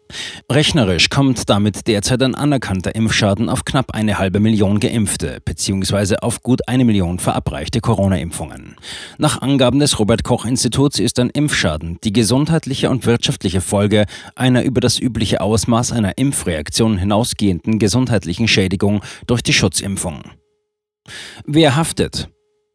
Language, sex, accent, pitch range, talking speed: German, male, German, 100-130 Hz, 125 wpm